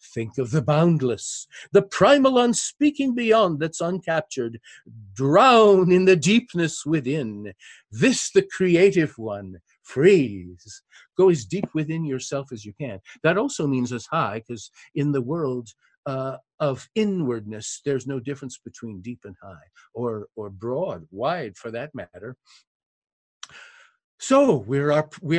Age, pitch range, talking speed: 50-69, 115-165 Hz, 135 wpm